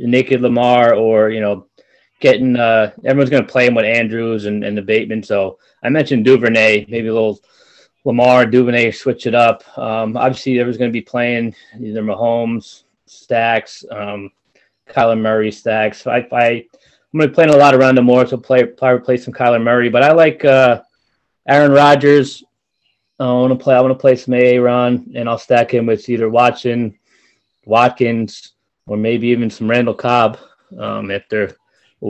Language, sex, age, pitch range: English, male, 20-39, 115-135 Hz